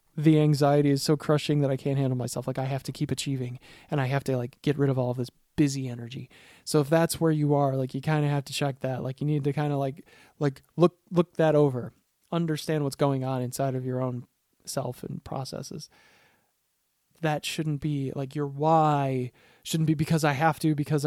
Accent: American